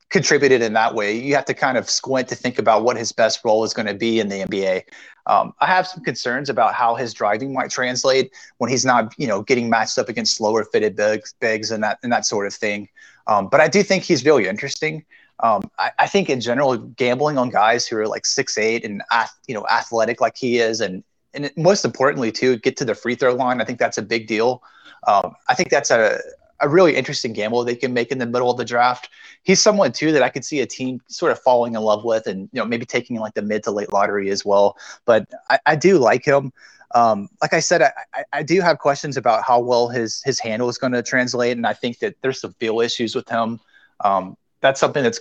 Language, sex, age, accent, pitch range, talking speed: English, male, 30-49, American, 110-135 Hz, 245 wpm